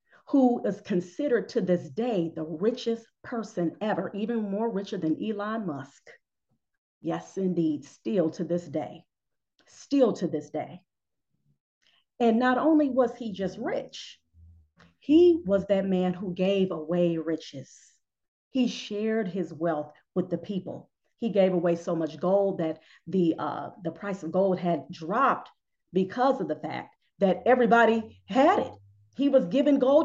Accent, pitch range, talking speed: American, 170-235 Hz, 150 wpm